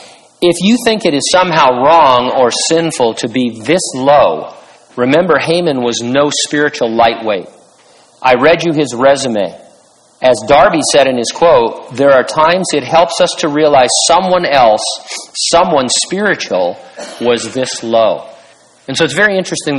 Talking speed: 150 wpm